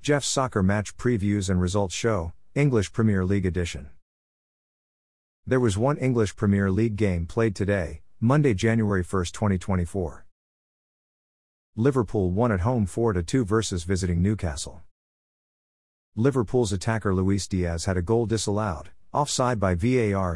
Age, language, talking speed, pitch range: 50-69, English, 130 wpm, 90-115 Hz